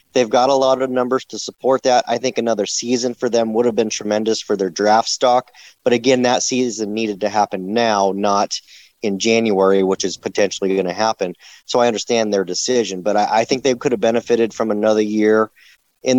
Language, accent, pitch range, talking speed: English, American, 105-120 Hz, 210 wpm